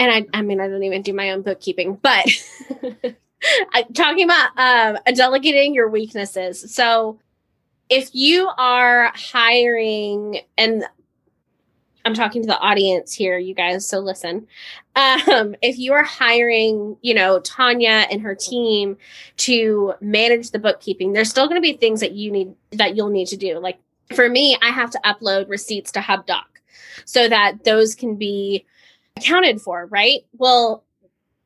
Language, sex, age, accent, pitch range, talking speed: English, female, 10-29, American, 205-250 Hz, 160 wpm